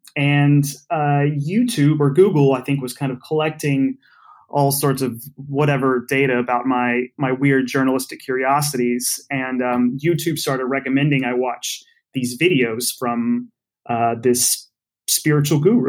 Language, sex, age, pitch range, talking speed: English, male, 30-49, 125-145 Hz, 135 wpm